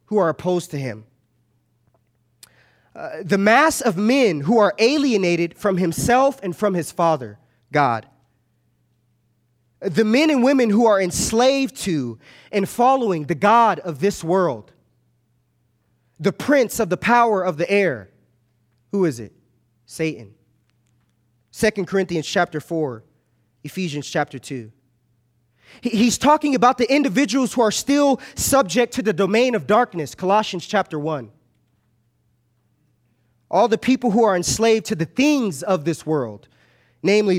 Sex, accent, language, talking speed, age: male, American, English, 135 wpm, 20-39